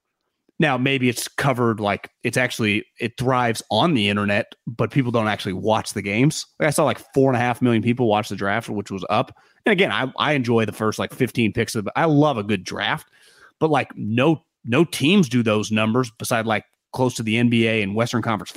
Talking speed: 225 wpm